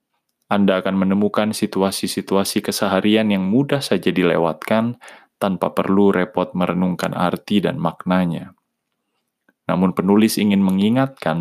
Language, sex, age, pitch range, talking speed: Indonesian, male, 20-39, 90-115 Hz, 105 wpm